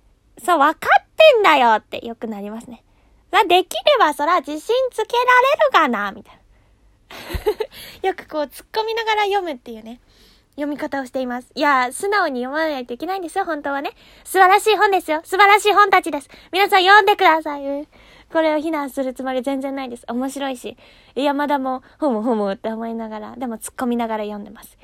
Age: 20-39